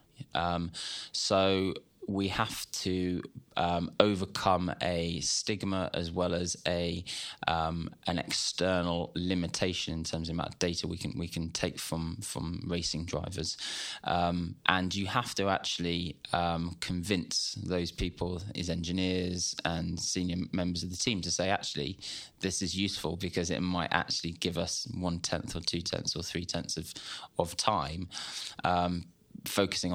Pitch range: 85-95 Hz